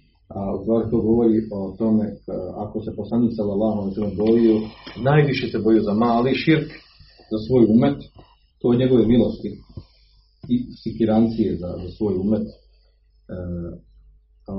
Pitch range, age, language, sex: 105-115 Hz, 40-59, Croatian, male